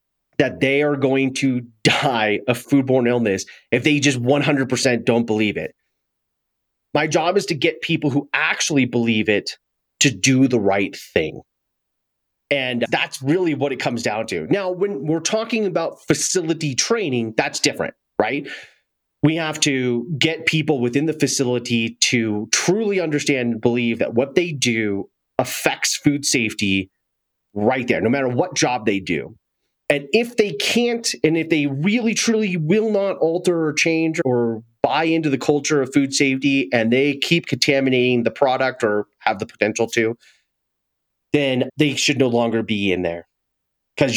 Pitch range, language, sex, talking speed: 120-160 Hz, English, male, 160 wpm